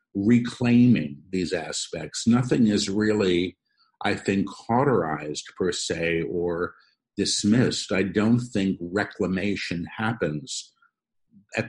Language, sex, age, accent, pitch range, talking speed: English, male, 50-69, American, 95-115 Hz, 100 wpm